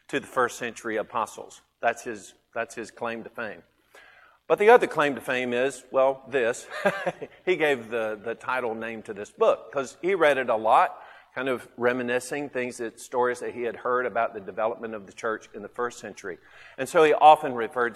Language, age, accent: English, 50-69, American